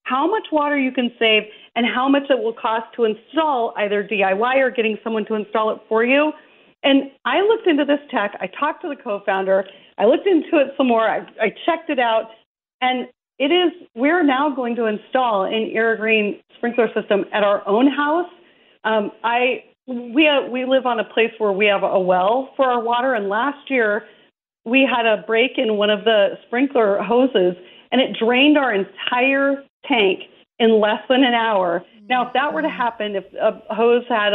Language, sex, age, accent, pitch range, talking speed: English, female, 40-59, American, 220-275 Hz, 200 wpm